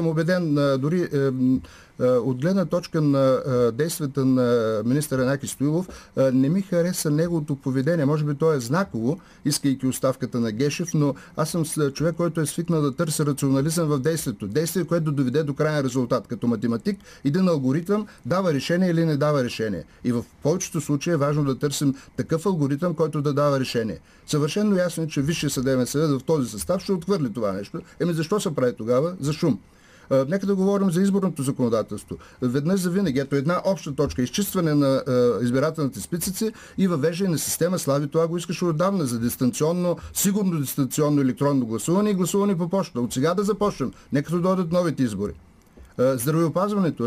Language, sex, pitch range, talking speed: Bulgarian, male, 130-175 Hz, 180 wpm